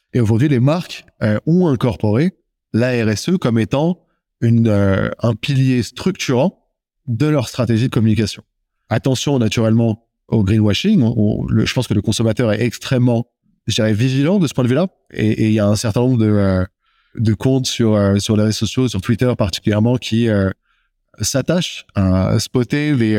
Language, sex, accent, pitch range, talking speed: French, male, French, 105-135 Hz, 175 wpm